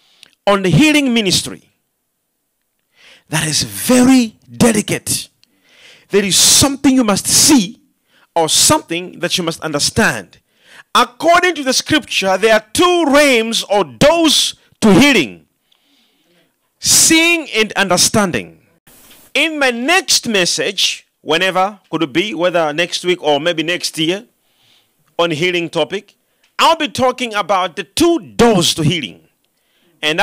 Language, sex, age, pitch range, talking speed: English, male, 40-59, 170-260 Hz, 125 wpm